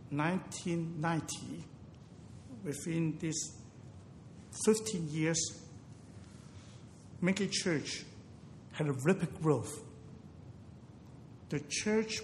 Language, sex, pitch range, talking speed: English, male, 130-165 Hz, 65 wpm